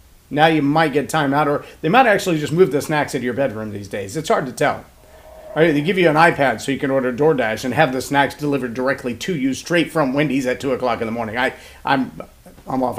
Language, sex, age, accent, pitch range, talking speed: English, male, 40-59, American, 135-225 Hz, 245 wpm